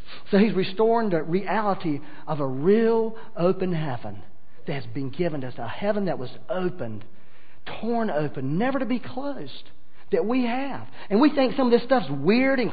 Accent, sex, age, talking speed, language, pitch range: American, male, 40-59, 185 wpm, English, 155-220 Hz